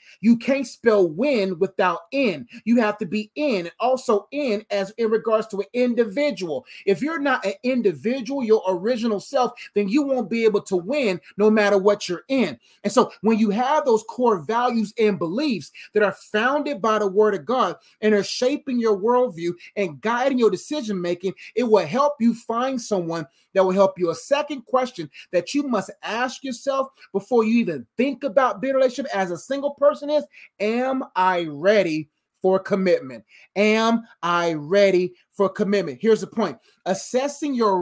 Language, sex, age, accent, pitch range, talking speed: English, male, 30-49, American, 195-255 Hz, 180 wpm